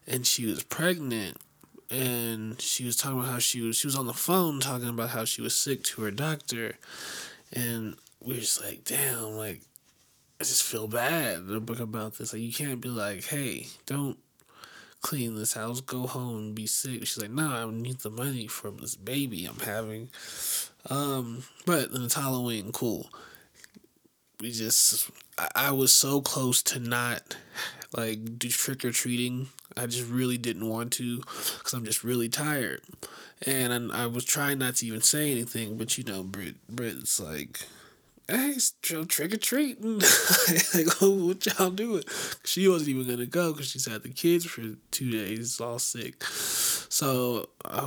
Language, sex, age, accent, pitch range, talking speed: English, male, 20-39, American, 115-140 Hz, 175 wpm